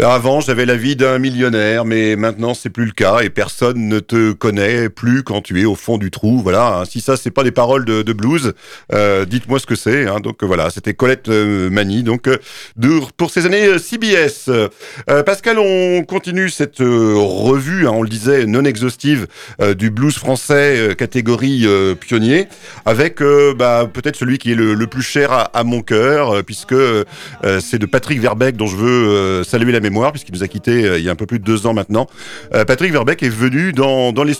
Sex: male